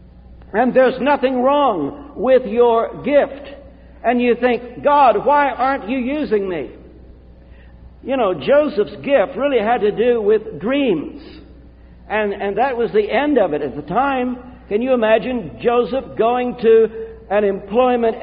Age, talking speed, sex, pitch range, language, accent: 60-79, 150 wpm, male, 185-265 Hz, English, American